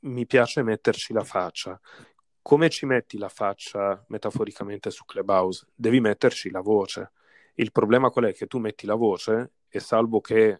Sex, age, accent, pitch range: male, 30-49, native, 100-125 Hz